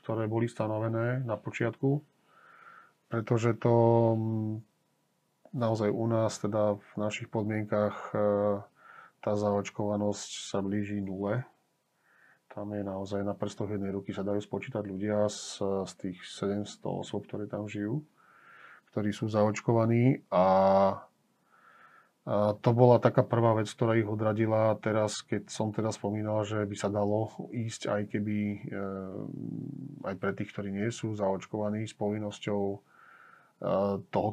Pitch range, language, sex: 105-115 Hz, Slovak, male